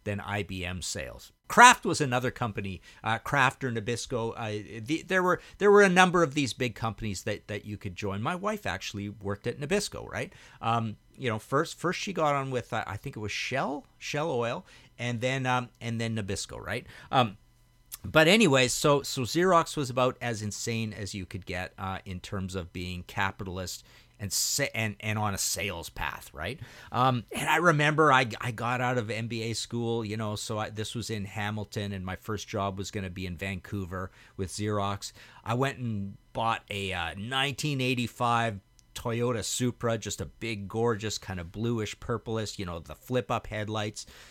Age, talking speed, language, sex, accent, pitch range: 50-69, 190 wpm, English, male, American, 100-130 Hz